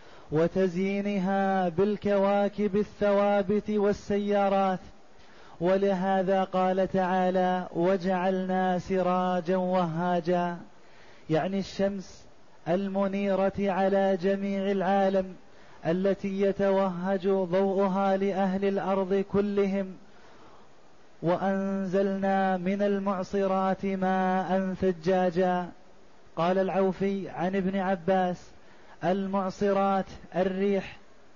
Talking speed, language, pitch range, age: 65 wpm, Arabic, 185-195 Hz, 30-49